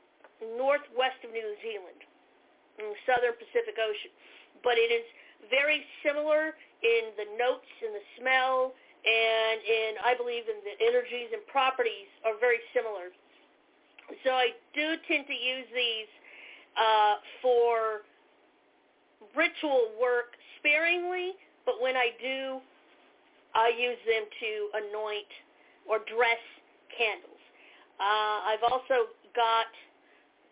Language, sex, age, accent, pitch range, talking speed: English, female, 50-69, American, 240-325 Hz, 120 wpm